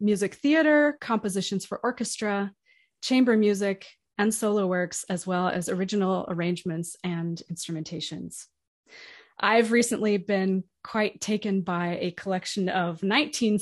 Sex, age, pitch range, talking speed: female, 30-49, 180-225 Hz, 120 wpm